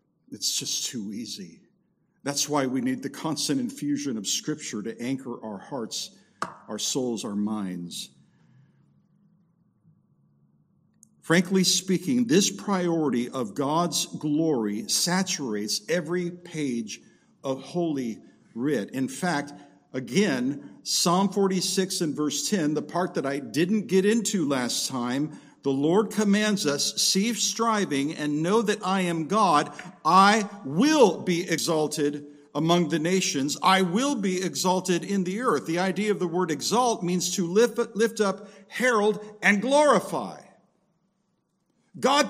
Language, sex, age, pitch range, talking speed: English, male, 50-69, 145-205 Hz, 130 wpm